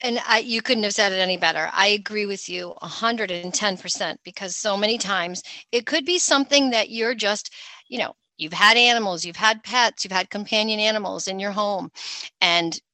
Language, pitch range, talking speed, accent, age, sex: English, 175-220 Hz, 190 wpm, American, 40-59, female